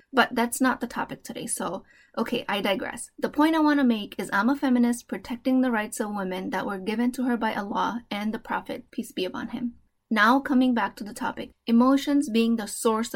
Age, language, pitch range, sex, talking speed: 20-39, English, 220-260 Hz, female, 225 wpm